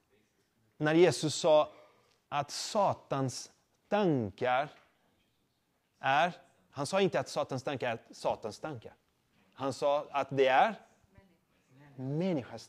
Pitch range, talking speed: 120-160 Hz, 105 wpm